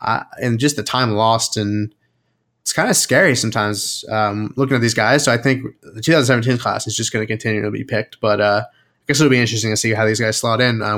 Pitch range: 110-125 Hz